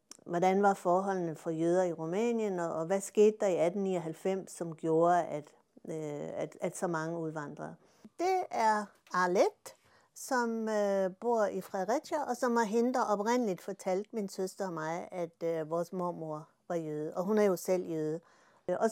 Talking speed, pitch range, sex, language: 160 wpm, 175-235 Hz, female, Danish